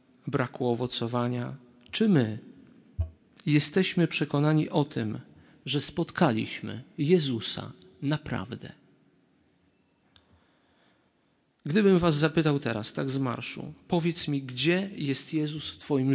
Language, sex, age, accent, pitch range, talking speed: Polish, male, 40-59, native, 125-160 Hz, 95 wpm